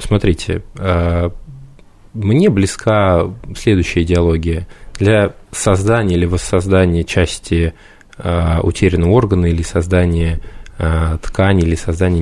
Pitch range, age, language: 85-110 Hz, 20-39, Russian